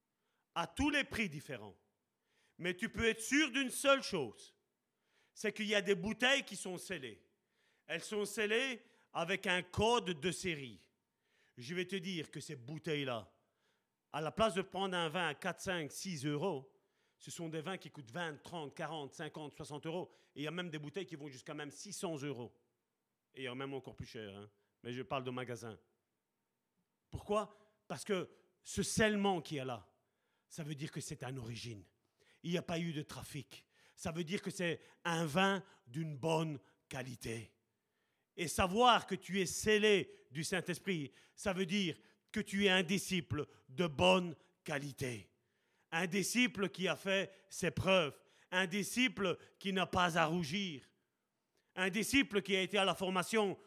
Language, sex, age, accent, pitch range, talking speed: French, male, 40-59, French, 145-195 Hz, 180 wpm